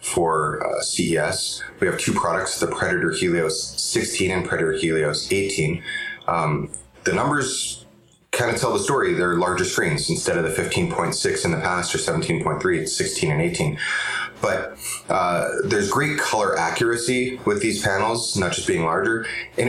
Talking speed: 160 wpm